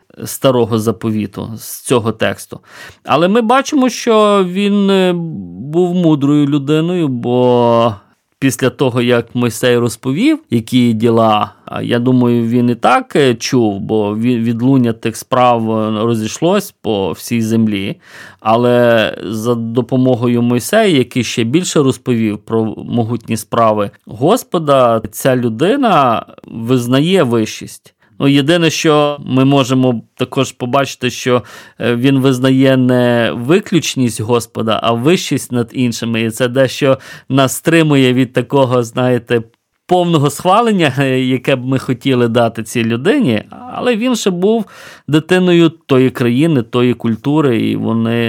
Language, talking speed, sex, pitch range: Ukrainian, 120 wpm, male, 115-145 Hz